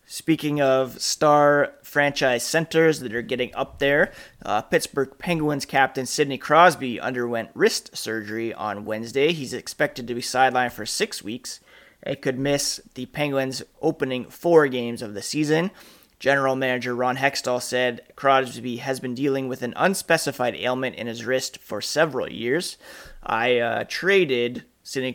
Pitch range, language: 120-145 Hz, English